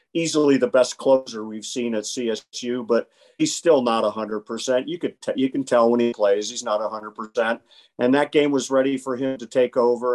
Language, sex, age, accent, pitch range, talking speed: English, male, 50-69, American, 115-140 Hz, 225 wpm